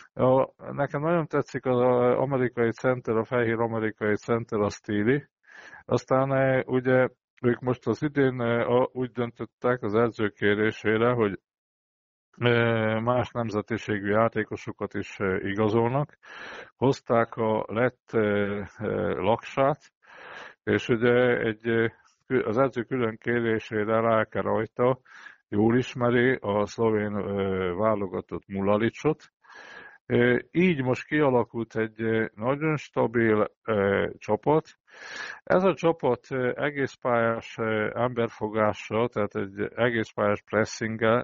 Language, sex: Hungarian, male